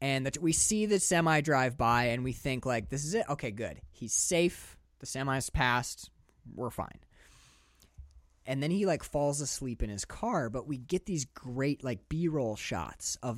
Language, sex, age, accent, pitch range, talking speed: English, male, 30-49, American, 105-165 Hz, 190 wpm